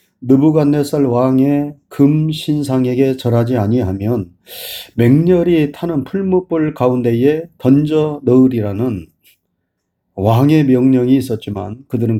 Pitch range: 110-150 Hz